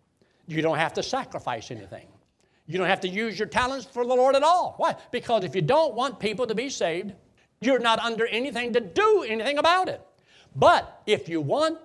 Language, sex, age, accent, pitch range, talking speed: English, male, 60-79, American, 205-285 Hz, 210 wpm